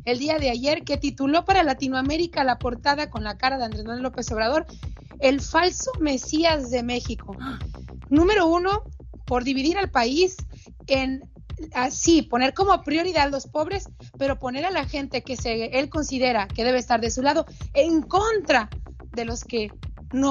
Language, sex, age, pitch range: Spanish, female, 30-49, 250-310 Hz